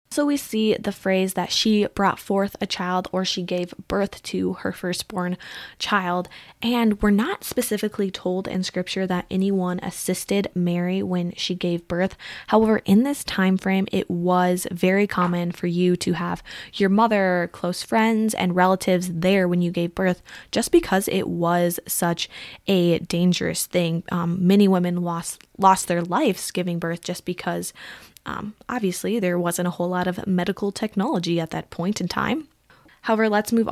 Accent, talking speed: American, 170 wpm